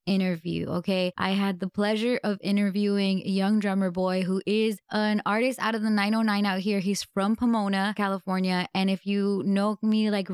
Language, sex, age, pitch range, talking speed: English, female, 20-39, 185-205 Hz, 185 wpm